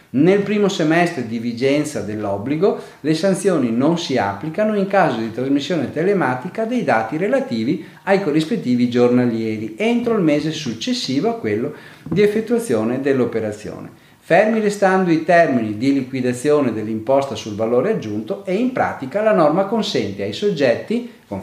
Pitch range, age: 115-185 Hz, 40-59